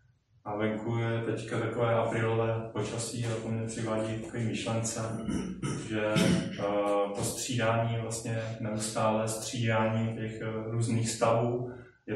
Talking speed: 115 wpm